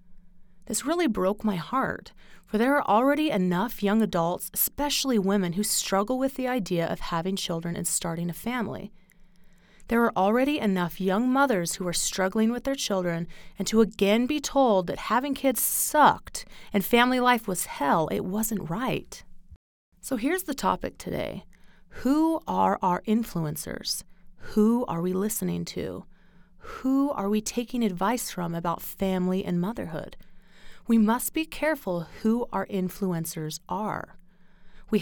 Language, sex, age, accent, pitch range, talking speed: English, female, 30-49, American, 180-240 Hz, 150 wpm